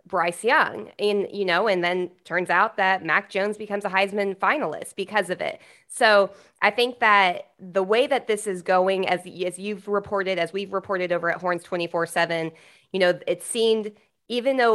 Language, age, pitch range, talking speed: English, 20-39, 170-200 Hz, 185 wpm